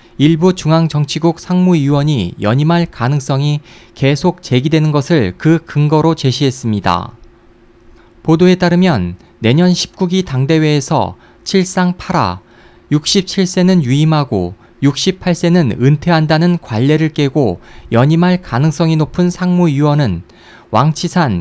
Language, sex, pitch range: Korean, male, 120-175 Hz